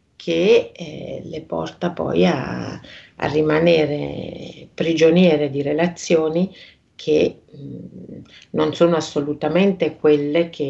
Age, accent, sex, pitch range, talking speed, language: 50-69, native, female, 150-170 Hz, 95 wpm, Italian